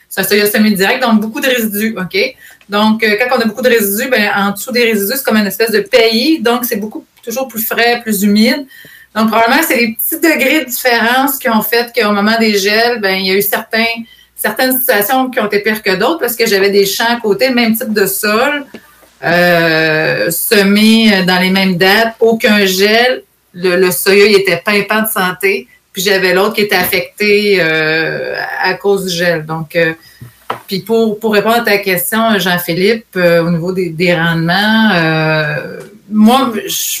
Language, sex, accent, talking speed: French, female, Canadian, 200 wpm